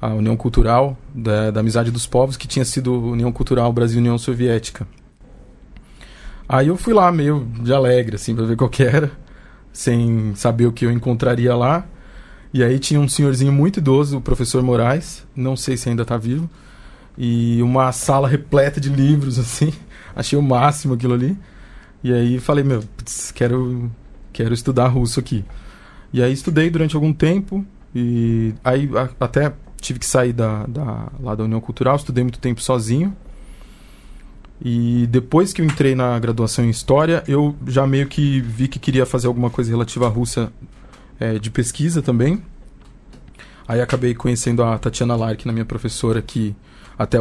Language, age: Portuguese, 20-39